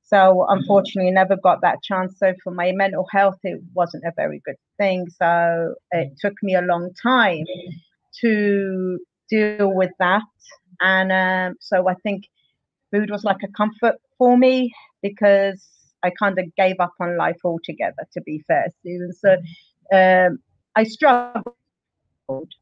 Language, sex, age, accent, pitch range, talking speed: English, female, 40-59, British, 185-205 Hz, 150 wpm